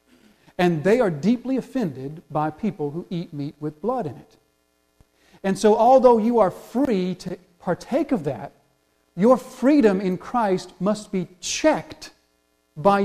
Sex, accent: male, American